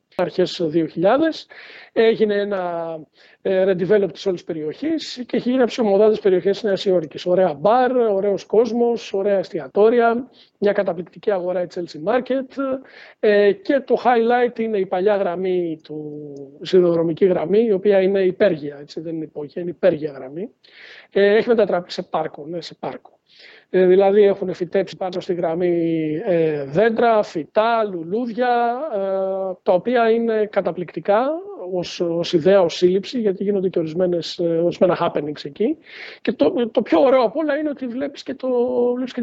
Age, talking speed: 50-69, 140 wpm